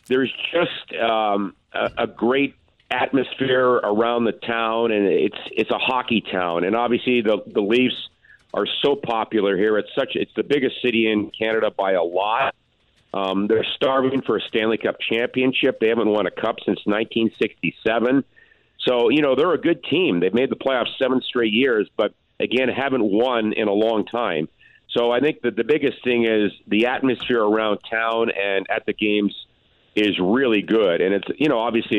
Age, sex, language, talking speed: 50-69, male, English, 180 wpm